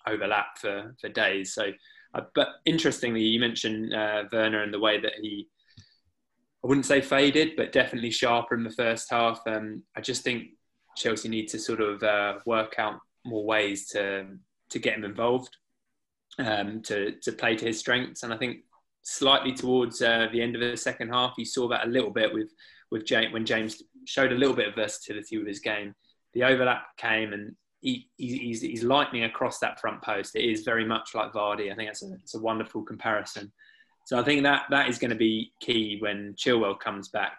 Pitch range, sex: 110-125 Hz, male